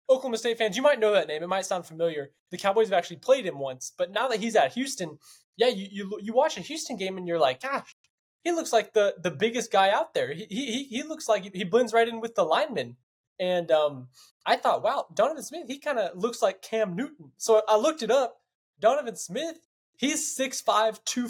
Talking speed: 235 wpm